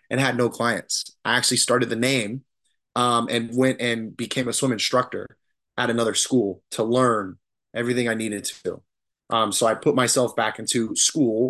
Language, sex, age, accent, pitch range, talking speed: English, male, 20-39, American, 110-135 Hz, 175 wpm